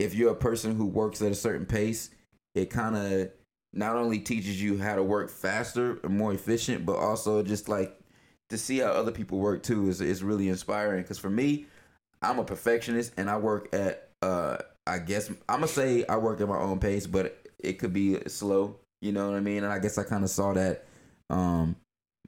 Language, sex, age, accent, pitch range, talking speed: English, male, 20-39, American, 95-110 Hz, 220 wpm